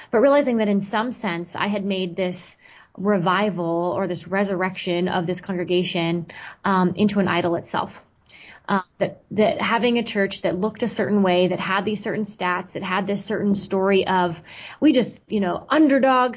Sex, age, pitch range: female, 20-39, 180-210 Hz